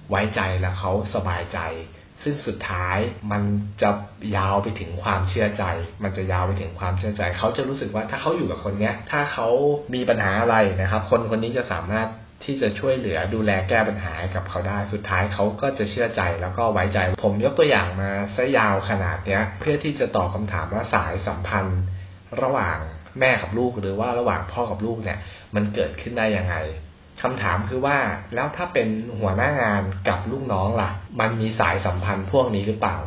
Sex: male